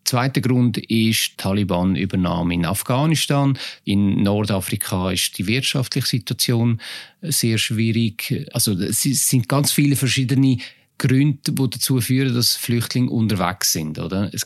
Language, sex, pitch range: German, male, 115-135 Hz